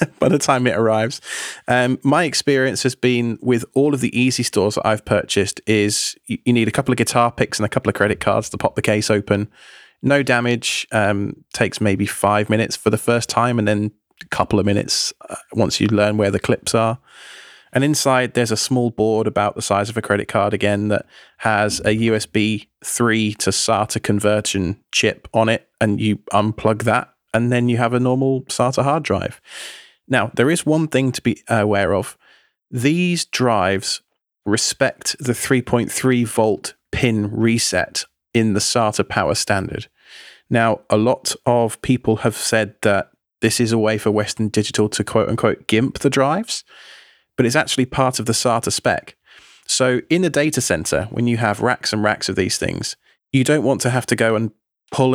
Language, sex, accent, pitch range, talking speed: English, male, British, 105-125 Hz, 190 wpm